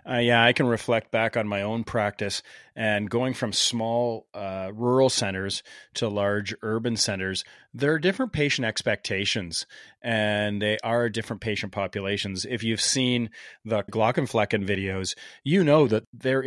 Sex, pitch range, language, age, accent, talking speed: male, 105-125 Hz, English, 40-59, American, 155 wpm